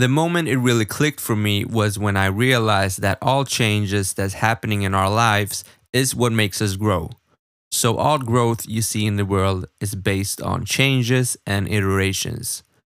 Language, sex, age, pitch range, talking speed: Swedish, male, 20-39, 105-130 Hz, 175 wpm